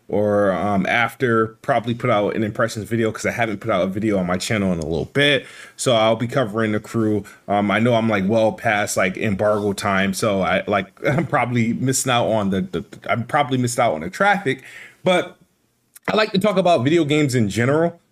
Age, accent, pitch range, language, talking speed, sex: 20-39, American, 105-130 Hz, English, 220 wpm, male